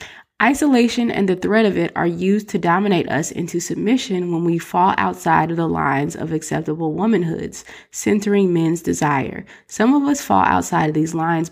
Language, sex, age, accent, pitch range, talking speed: English, female, 20-39, American, 160-205 Hz, 175 wpm